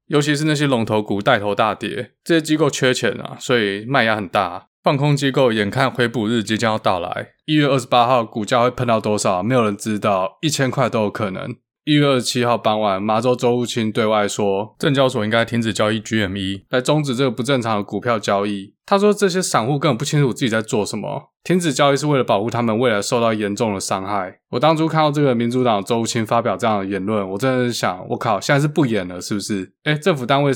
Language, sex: Chinese, male